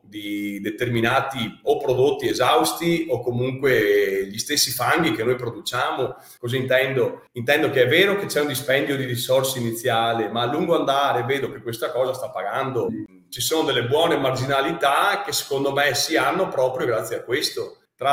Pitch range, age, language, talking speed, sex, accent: 120-155 Hz, 30-49, Italian, 170 wpm, male, native